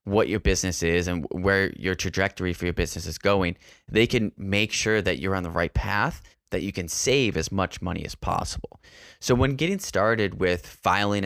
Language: English